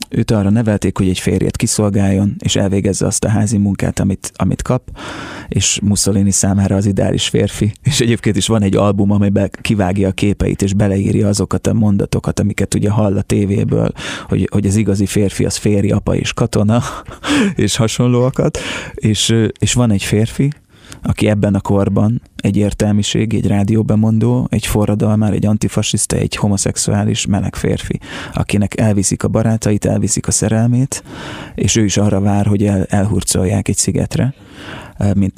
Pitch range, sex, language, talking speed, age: 100-110 Hz, male, Hungarian, 160 wpm, 20-39